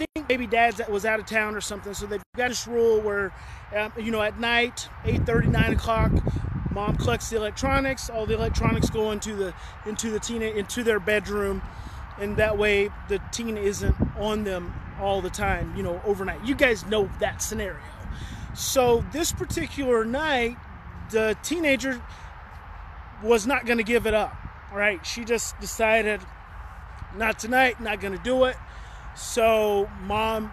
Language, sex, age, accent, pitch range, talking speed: English, male, 20-39, American, 210-255 Hz, 160 wpm